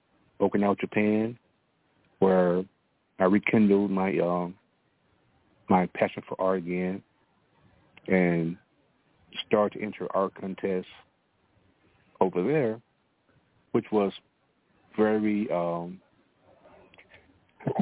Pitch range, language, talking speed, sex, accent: 90-105 Hz, English, 80 wpm, male, American